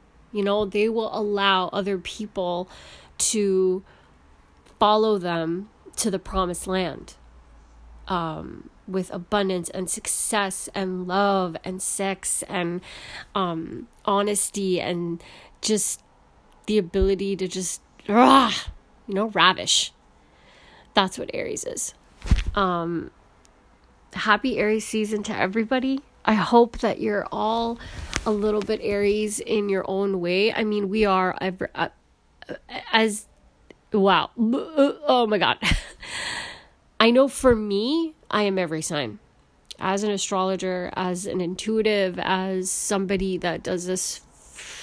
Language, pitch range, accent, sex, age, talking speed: English, 175-210 Hz, American, female, 30-49, 120 wpm